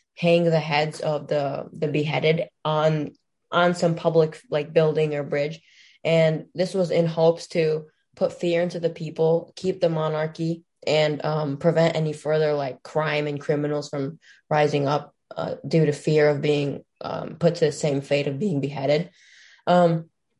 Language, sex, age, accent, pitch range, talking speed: English, female, 10-29, American, 150-165 Hz, 170 wpm